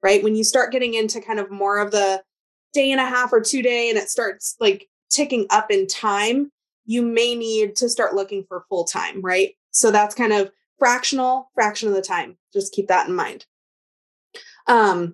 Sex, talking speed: female, 200 wpm